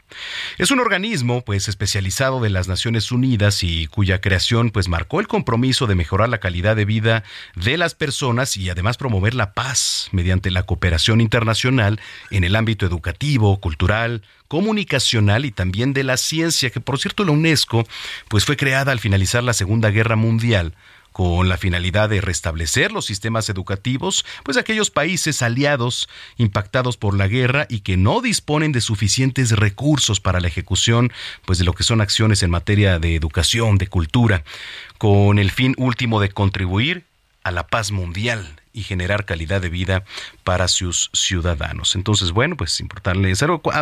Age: 40-59